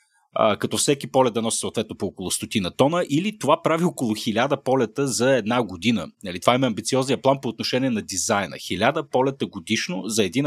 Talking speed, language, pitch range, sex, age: 190 wpm, Bulgarian, 110-140 Hz, male, 30-49